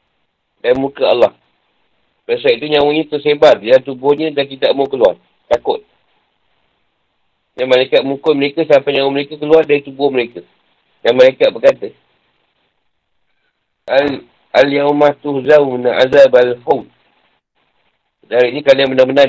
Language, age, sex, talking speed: Malay, 50-69, male, 120 wpm